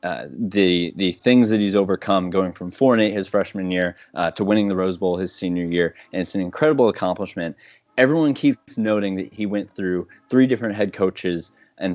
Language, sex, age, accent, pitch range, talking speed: English, male, 20-39, American, 95-115 Hz, 195 wpm